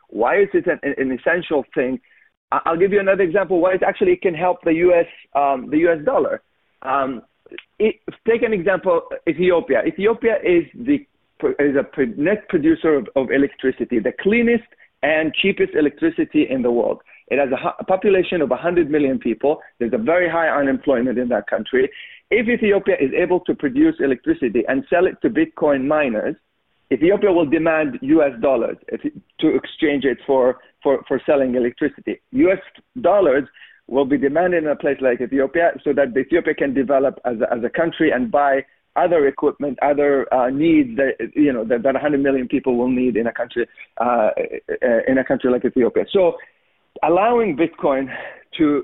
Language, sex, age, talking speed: English, male, 40-59, 175 wpm